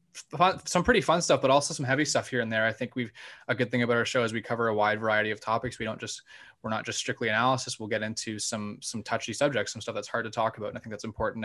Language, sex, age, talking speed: English, male, 20-39, 295 wpm